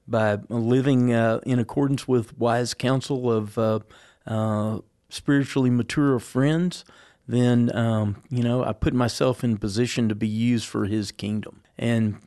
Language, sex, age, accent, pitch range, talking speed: English, male, 40-59, American, 110-125 Hz, 145 wpm